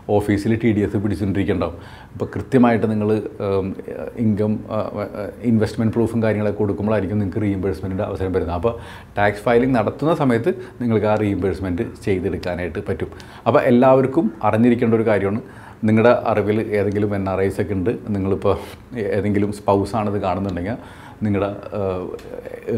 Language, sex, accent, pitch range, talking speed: Malayalam, male, native, 100-115 Hz, 120 wpm